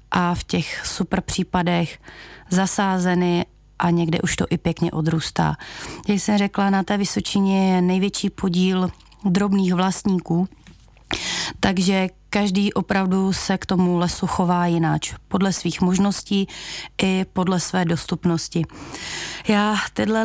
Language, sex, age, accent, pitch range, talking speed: Czech, female, 30-49, native, 185-215 Hz, 125 wpm